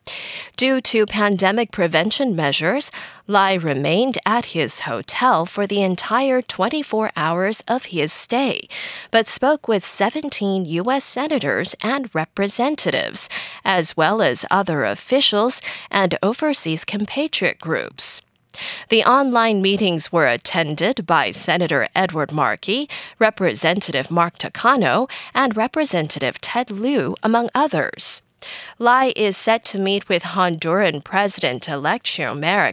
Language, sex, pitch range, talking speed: English, female, 175-255 Hz, 115 wpm